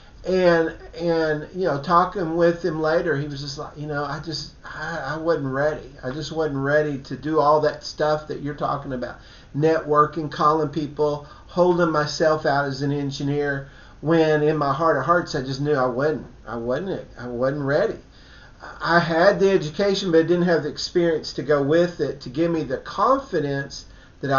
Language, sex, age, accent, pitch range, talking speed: English, male, 40-59, American, 135-170 Hz, 195 wpm